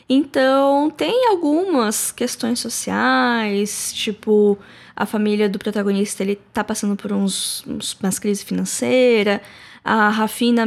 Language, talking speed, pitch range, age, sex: Portuguese, 120 wpm, 200-245 Hz, 10-29, female